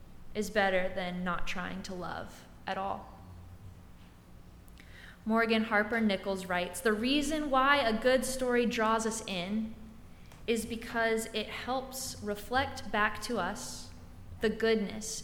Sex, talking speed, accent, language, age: female, 125 wpm, American, English, 20-39